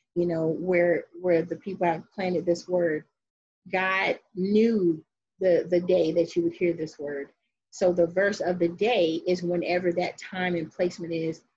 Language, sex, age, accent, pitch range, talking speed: English, female, 30-49, American, 165-190 Hz, 175 wpm